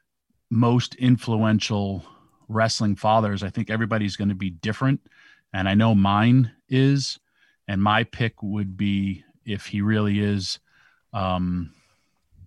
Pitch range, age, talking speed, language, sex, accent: 100-120 Hz, 40-59, 125 wpm, English, male, American